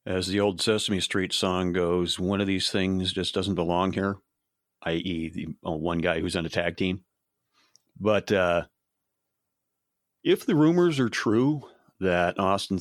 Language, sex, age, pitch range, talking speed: English, male, 40-59, 90-105 Hz, 155 wpm